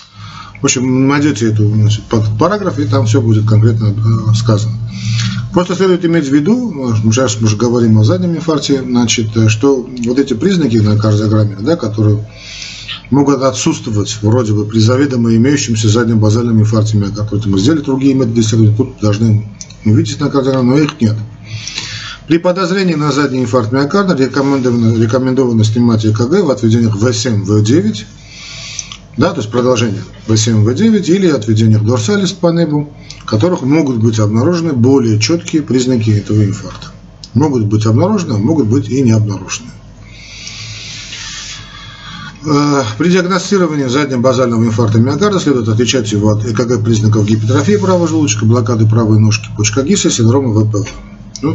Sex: male